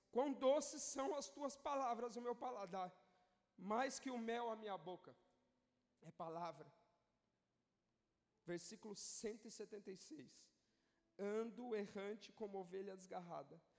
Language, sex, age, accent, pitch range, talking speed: Portuguese, male, 40-59, Brazilian, 185-240 Hz, 110 wpm